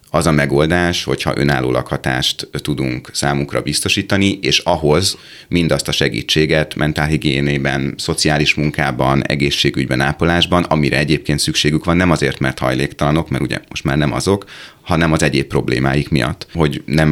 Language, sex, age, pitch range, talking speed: Hungarian, male, 30-49, 70-85 Hz, 140 wpm